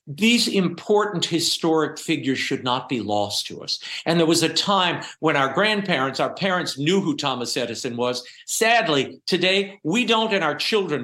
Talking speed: 175 wpm